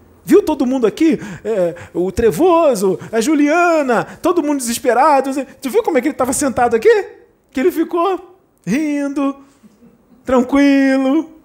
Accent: Brazilian